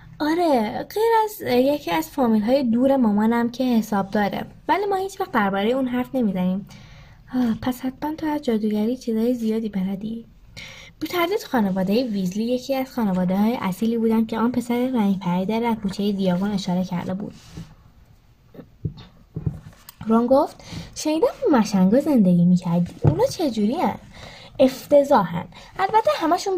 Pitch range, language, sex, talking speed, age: 200-300 Hz, Persian, female, 140 wpm, 20-39